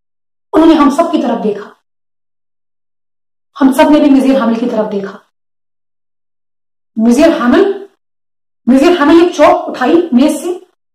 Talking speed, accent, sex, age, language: 125 wpm, native, female, 30-49, Hindi